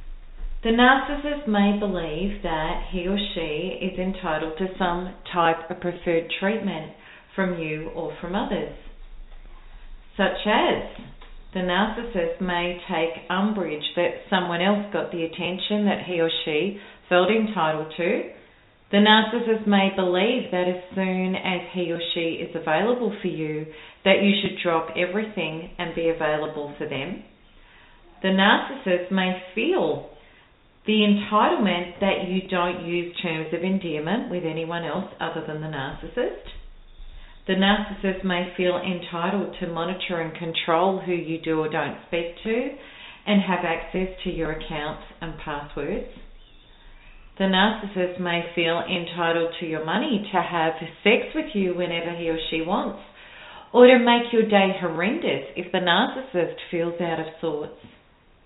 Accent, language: Australian, English